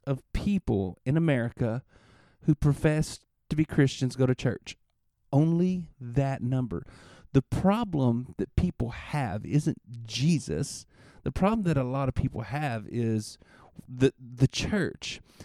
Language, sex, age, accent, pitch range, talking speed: English, male, 40-59, American, 125-160 Hz, 130 wpm